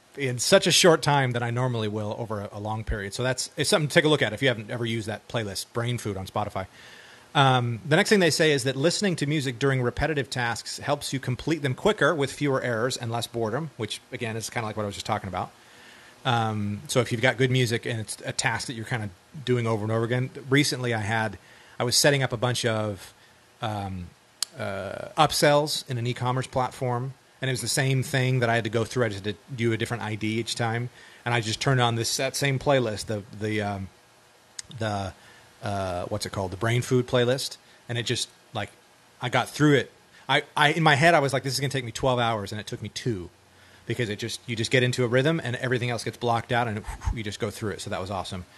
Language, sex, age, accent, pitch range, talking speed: English, male, 30-49, American, 110-135 Hz, 250 wpm